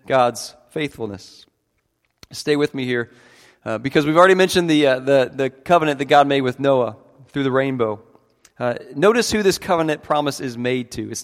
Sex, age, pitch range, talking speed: male, 40-59, 125-160 Hz, 180 wpm